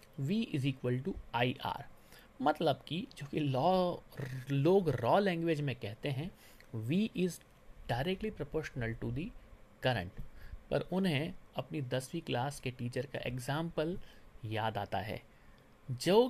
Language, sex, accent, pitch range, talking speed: Hindi, male, native, 120-170 Hz, 135 wpm